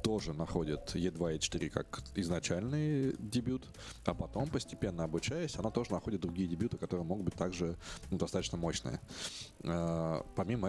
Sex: male